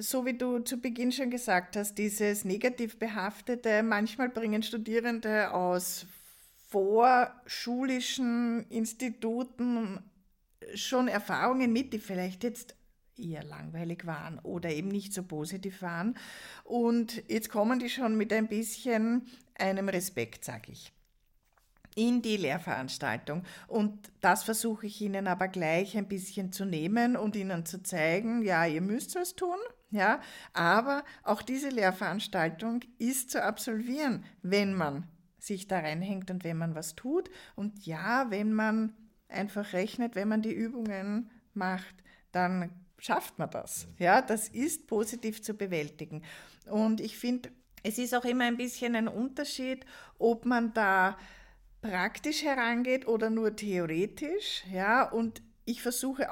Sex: female